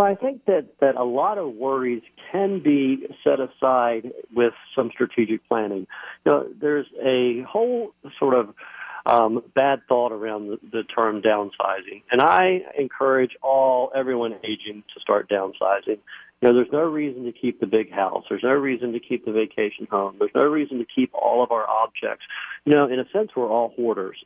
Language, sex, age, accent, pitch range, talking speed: English, male, 50-69, American, 110-135 Hz, 185 wpm